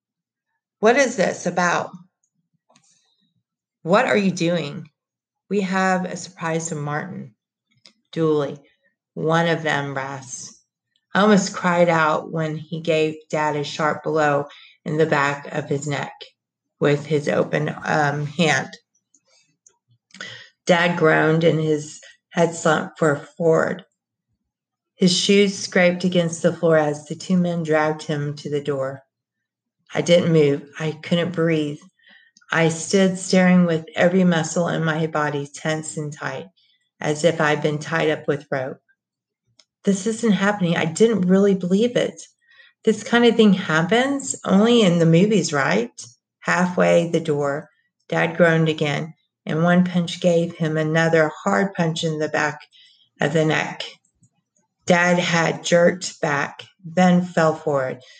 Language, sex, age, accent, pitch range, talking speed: English, female, 40-59, American, 155-185 Hz, 140 wpm